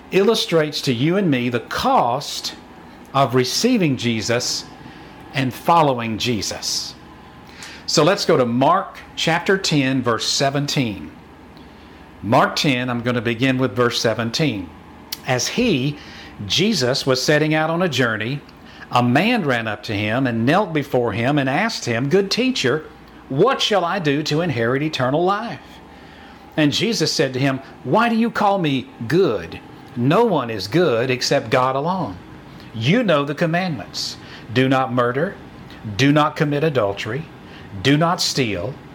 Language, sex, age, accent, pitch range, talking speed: English, male, 50-69, American, 125-165 Hz, 145 wpm